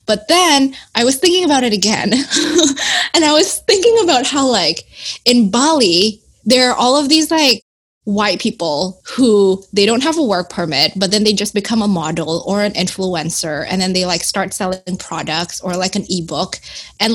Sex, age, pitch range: female, 20-39, 195-255 Hz